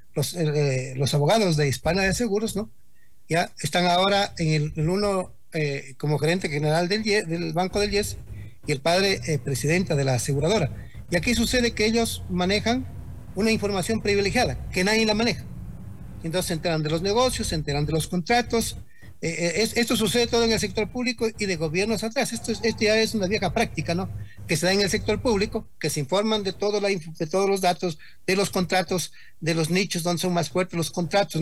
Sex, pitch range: male, 160-205 Hz